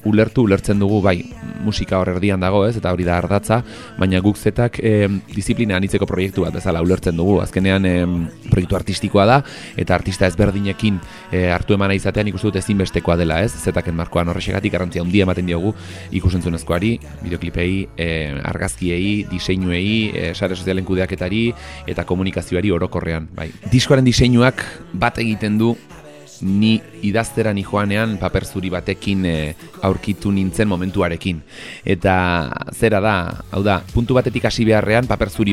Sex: male